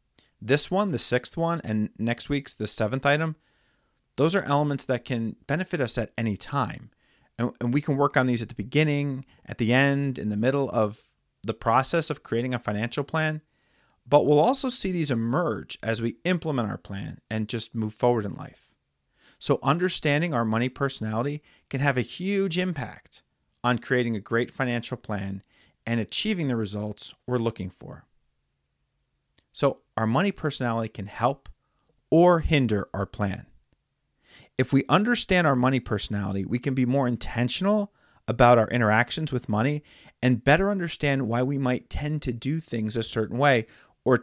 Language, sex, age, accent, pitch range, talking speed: English, male, 40-59, American, 110-145 Hz, 170 wpm